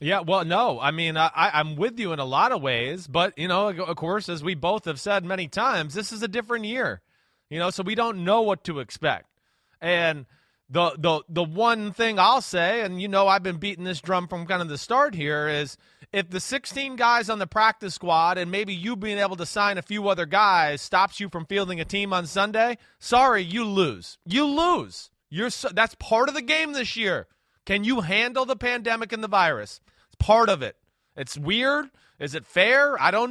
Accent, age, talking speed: American, 30-49, 220 wpm